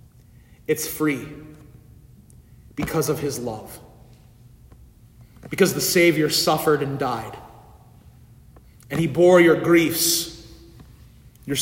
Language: English